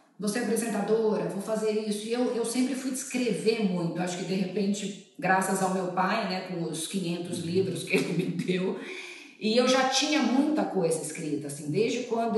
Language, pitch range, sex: Portuguese, 185-230 Hz, female